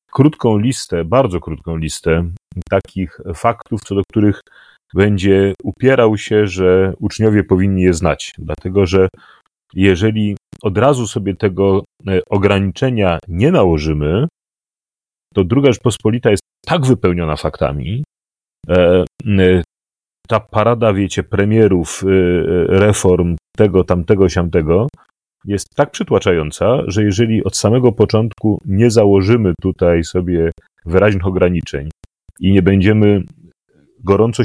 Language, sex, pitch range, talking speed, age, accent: Polish, male, 90-105 Hz, 105 wpm, 40-59, native